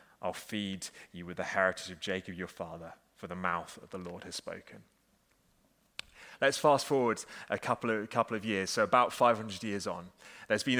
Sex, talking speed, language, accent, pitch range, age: male, 195 wpm, English, British, 110-140 Hz, 30-49